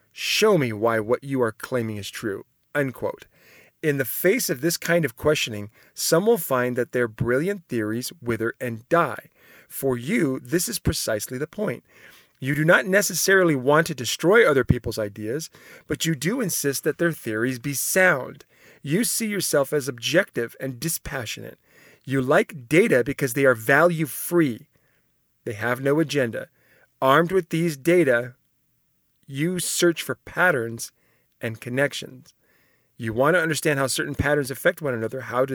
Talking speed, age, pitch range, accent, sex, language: 155 wpm, 40-59, 125-170 Hz, American, male, English